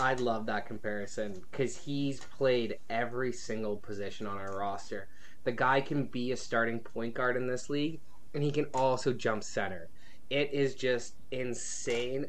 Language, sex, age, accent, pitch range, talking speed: English, male, 20-39, American, 120-145 Hz, 165 wpm